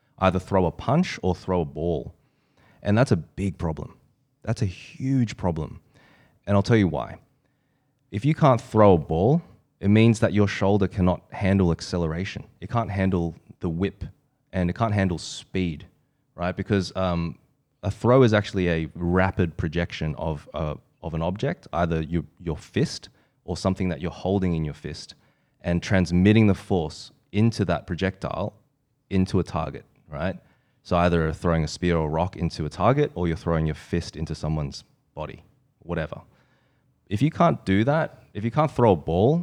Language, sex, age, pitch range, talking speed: English, male, 20-39, 85-115 Hz, 175 wpm